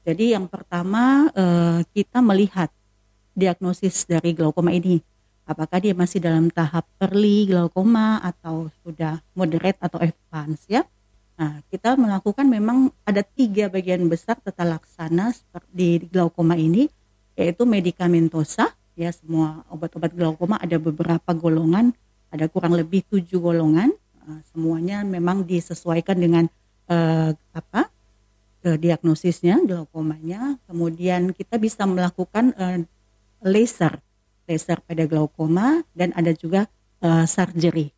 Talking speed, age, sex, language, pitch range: 110 wpm, 40-59, female, Indonesian, 165-195 Hz